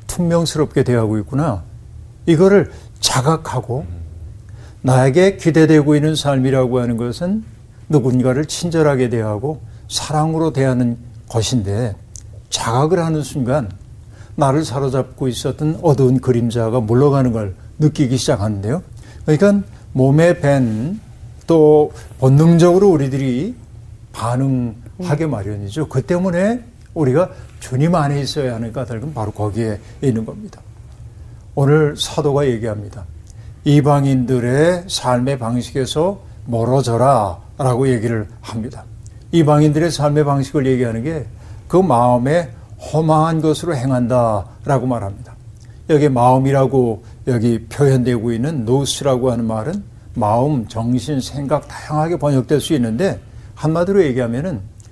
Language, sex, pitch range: Korean, male, 115-150 Hz